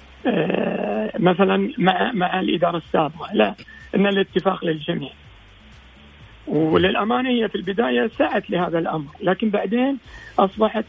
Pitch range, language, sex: 165-215 Hz, Arabic, male